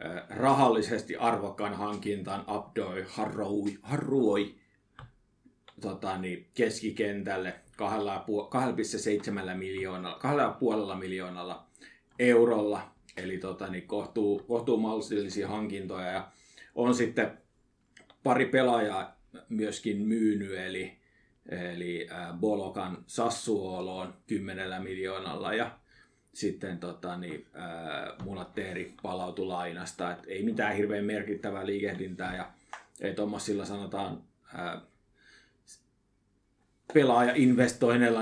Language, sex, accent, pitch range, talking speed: Finnish, male, native, 95-115 Hz, 80 wpm